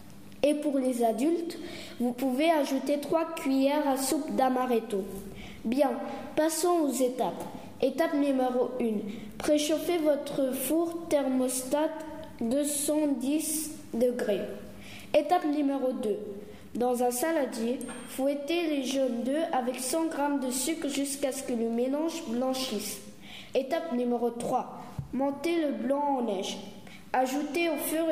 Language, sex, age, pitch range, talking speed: French, female, 20-39, 245-300 Hz, 125 wpm